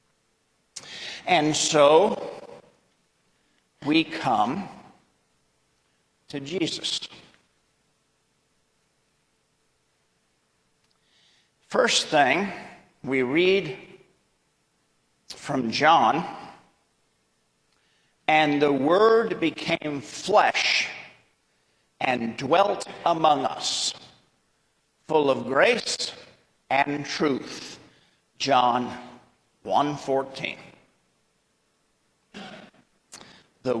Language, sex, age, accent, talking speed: English, male, 50-69, American, 50 wpm